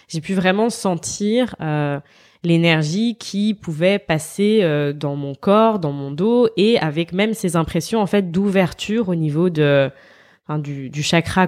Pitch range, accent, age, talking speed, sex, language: 160-205 Hz, French, 20-39, 160 wpm, female, French